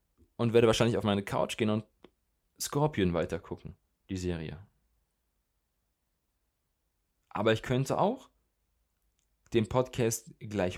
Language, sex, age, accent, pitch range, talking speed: German, male, 20-39, German, 85-120 Hz, 105 wpm